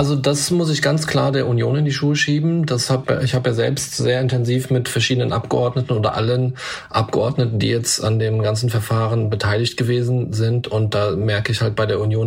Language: German